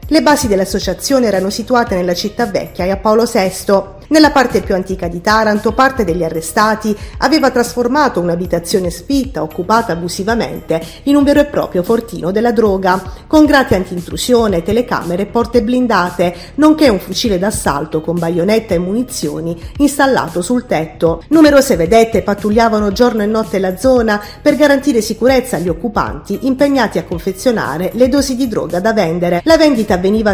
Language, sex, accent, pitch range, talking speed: Italian, female, native, 180-245 Hz, 155 wpm